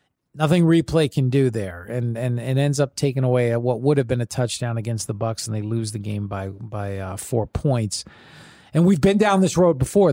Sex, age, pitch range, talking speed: male, 40-59, 115-145 Hz, 225 wpm